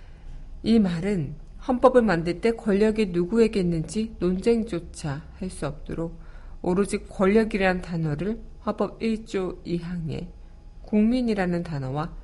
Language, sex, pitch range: Korean, female, 155-210 Hz